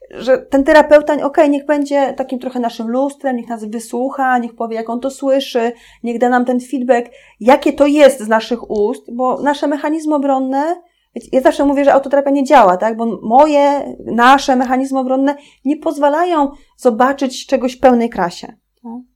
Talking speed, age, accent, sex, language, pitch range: 175 wpm, 30-49, native, female, Polish, 240-290 Hz